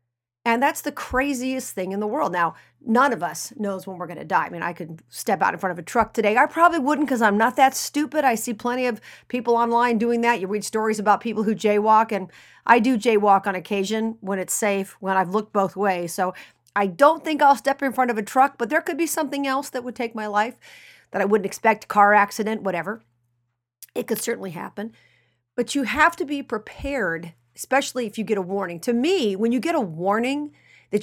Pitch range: 195-250 Hz